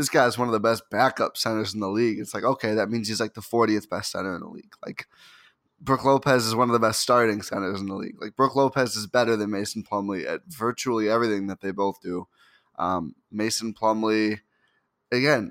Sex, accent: male, American